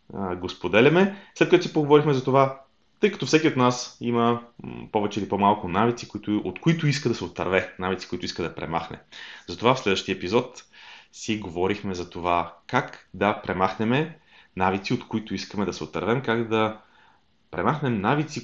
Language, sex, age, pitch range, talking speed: Bulgarian, male, 30-49, 95-125 Hz, 165 wpm